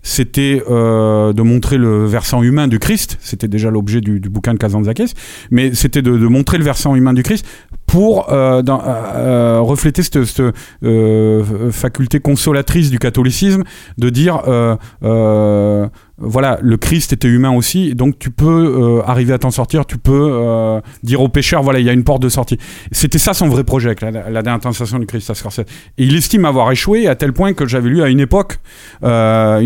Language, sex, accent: French, male, French